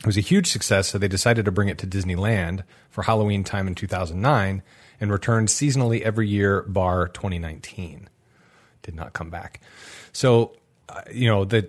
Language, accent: English, American